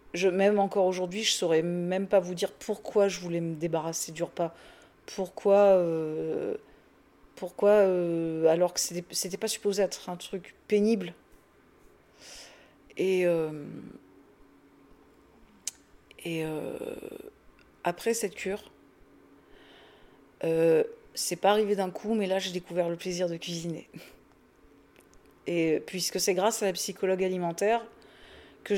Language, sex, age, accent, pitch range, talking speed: French, female, 40-59, French, 175-210 Hz, 125 wpm